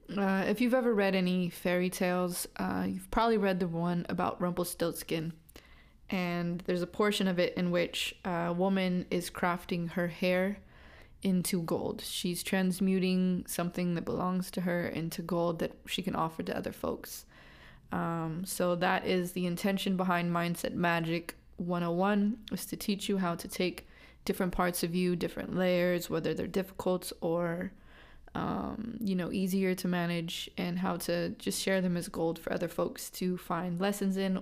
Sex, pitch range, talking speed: female, 175-195 Hz, 165 wpm